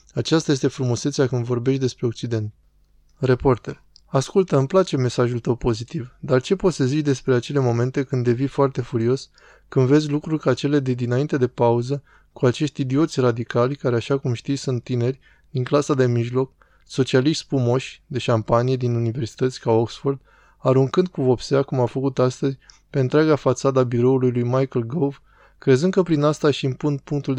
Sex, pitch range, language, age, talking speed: male, 125-145 Hz, Romanian, 20-39, 170 wpm